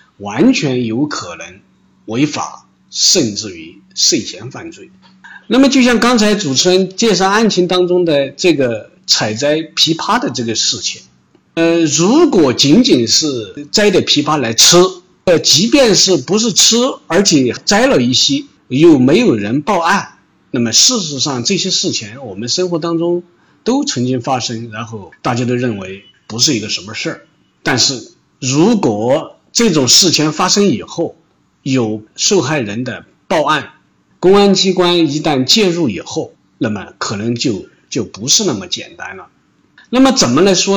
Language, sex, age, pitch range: Chinese, male, 50-69, 135-225 Hz